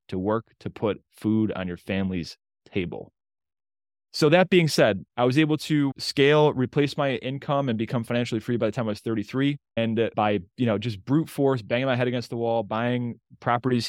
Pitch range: 115-140 Hz